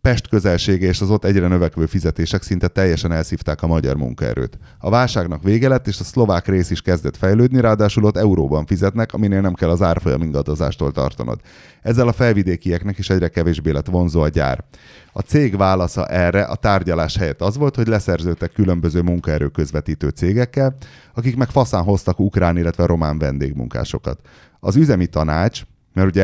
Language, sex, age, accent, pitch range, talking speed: English, male, 30-49, Finnish, 80-105 Hz, 165 wpm